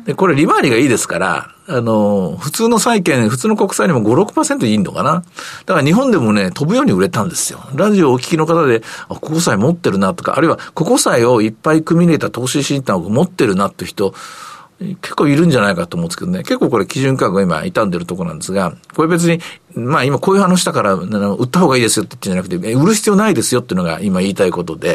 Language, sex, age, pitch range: Japanese, male, 50-69, 115-190 Hz